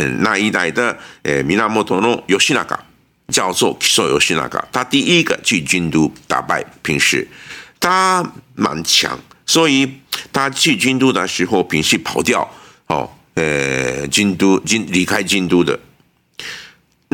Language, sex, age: Japanese, male, 50-69